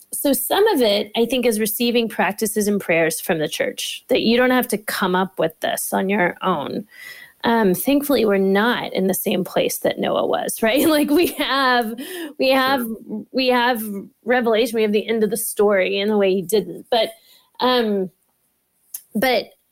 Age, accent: 30-49, American